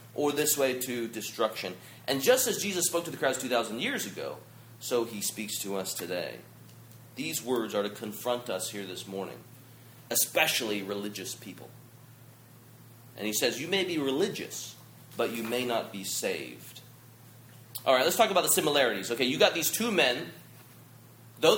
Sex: male